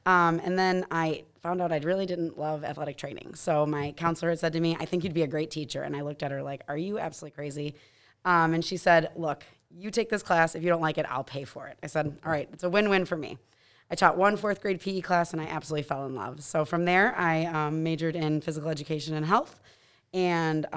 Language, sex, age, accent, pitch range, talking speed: English, female, 30-49, American, 150-175 Hz, 255 wpm